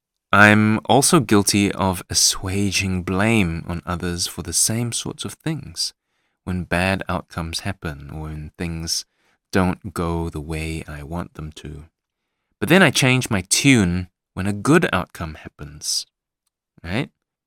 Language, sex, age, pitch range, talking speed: English, male, 20-39, 90-125 Hz, 140 wpm